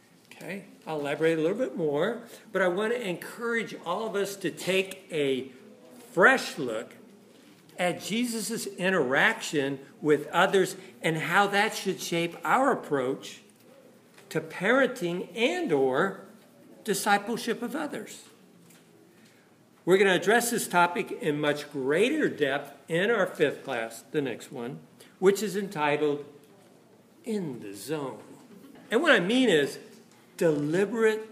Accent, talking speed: American, 130 wpm